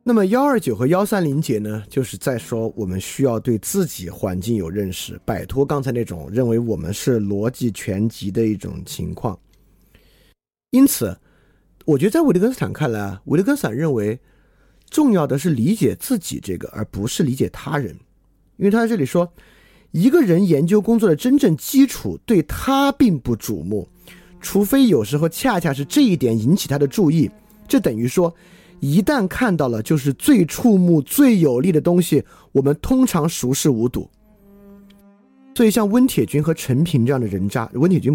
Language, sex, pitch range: Chinese, male, 115-180 Hz